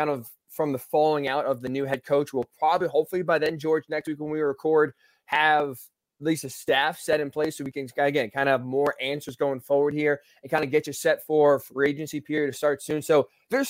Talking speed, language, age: 250 wpm, English, 20-39